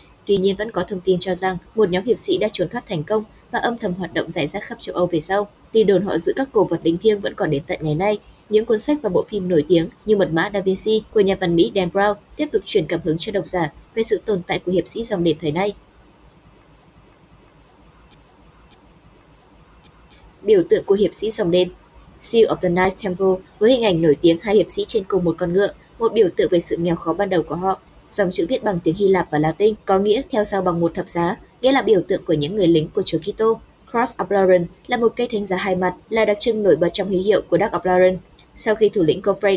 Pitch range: 175-215 Hz